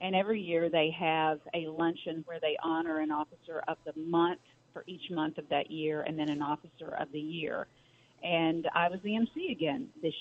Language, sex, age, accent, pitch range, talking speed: English, female, 40-59, American, 155-180 Hz, 205 wpm